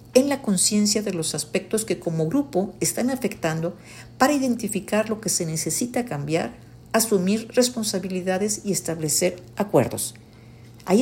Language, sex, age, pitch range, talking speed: Spanish, female, 50-69, 145-215 Hz, 130 wpm